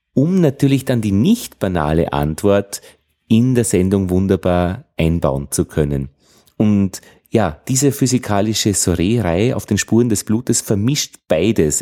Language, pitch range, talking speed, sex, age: German, 85-125 Hz, 135 wpm, male, 30-49